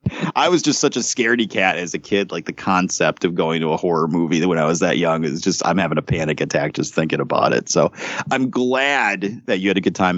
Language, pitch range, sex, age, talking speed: English, 90-110 Hz, male, 30-49, 260 wpm